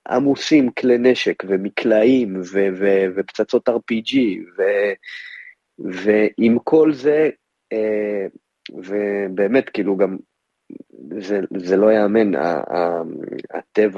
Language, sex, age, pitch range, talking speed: Hebrew, male, 30-49, 95-145 Hz, 80 wpm